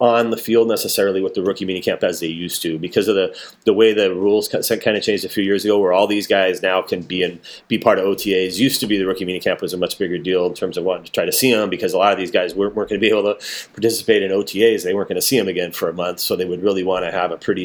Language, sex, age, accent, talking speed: English, male, 30-49, American, 325 wpm